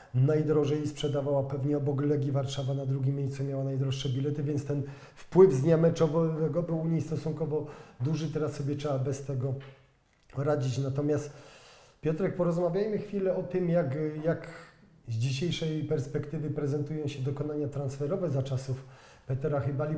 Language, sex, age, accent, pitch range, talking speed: Polish, male, 40-59, native, 145-165 Hz, 145 wpm